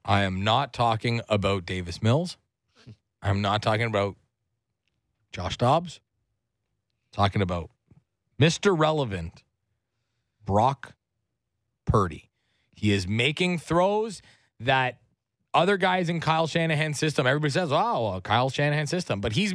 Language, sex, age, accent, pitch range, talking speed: English, male, 30-49, American, 110-160 Hz, 115 wpm